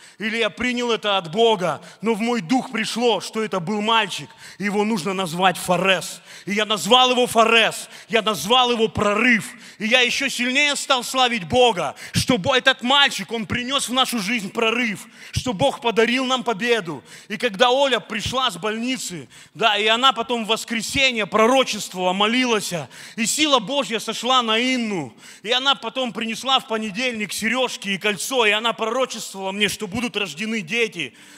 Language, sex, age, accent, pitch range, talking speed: Russian, male, 30-49, native, 215-255 Hz, 165 wpm